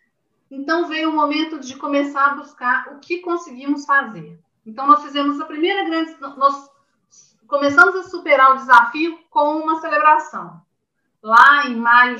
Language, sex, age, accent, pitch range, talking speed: Portuguese, female, 40-59, Brazilian, 230-315 Hz, 150 wpm